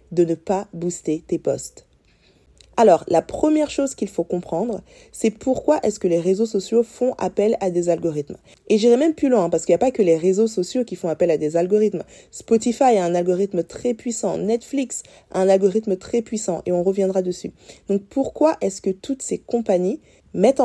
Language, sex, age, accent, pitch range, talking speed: French, female, 20-39, French, 175-225 Hz, 200 wpm